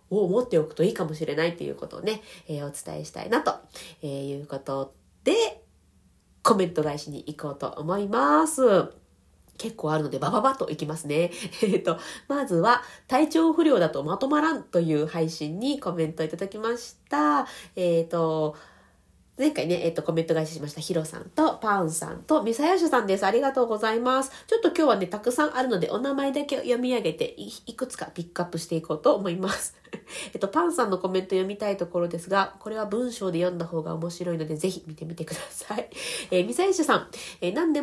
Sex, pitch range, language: female, 165-260 Hz, Japanese